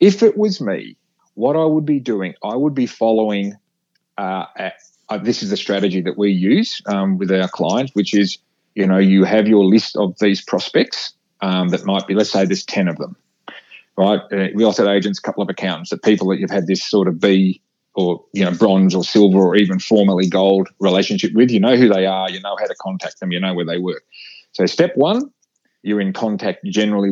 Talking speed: 230 wpm